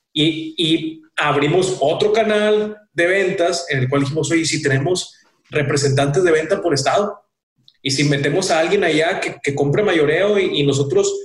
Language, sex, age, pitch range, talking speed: Spanish, male, 30-49, 145-210 Hz, 175 wpm